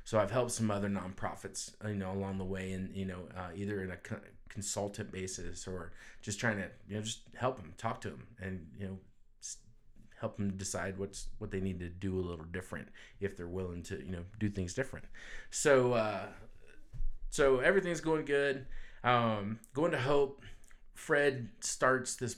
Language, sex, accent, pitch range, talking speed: English, male, American, 100-120 Hz, 185 wpm